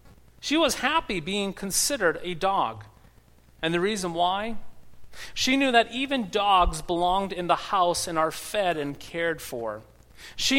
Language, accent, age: English, American, 40-59